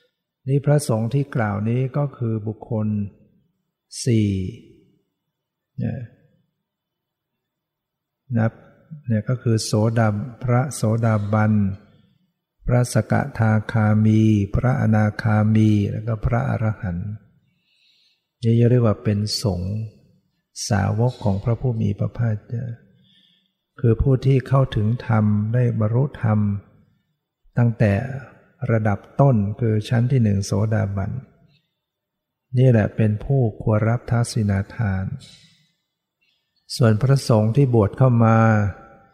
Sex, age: male, 60-79